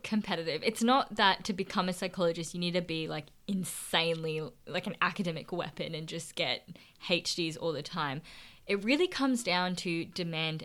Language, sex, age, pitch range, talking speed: English, female, 10-29, 165-210 Hz, 175 wpm